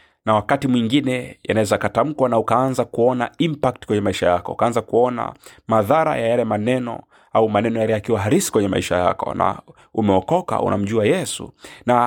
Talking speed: 155 wpm